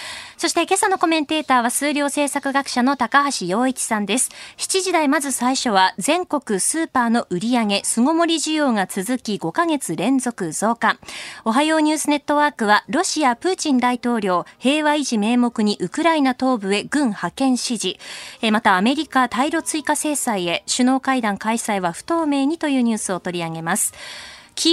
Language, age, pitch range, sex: Japanese, 20-39, 220-305 Hz, female